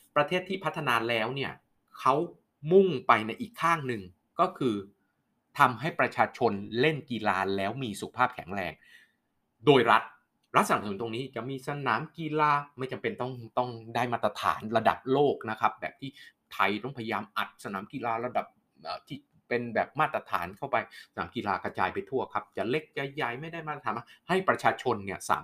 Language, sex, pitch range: Thai, male, 115-165 Hz